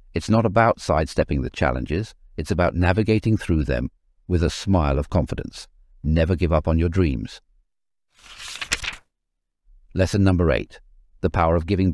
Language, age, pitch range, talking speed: English, 60-79, 85-110 Hz, 145 wpm